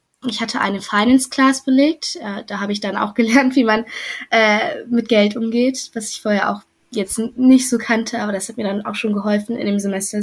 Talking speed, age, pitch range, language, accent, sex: 210 wpm, 10-29, 205-245 Hz, German, German, female